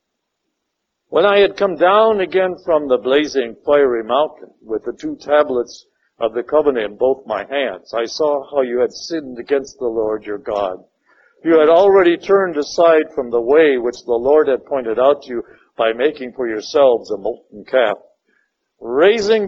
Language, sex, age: English, male, 60-79